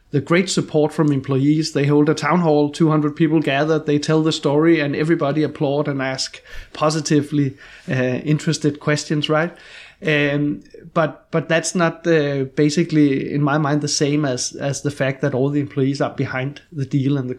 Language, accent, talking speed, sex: Danish, native, 185 wpm, male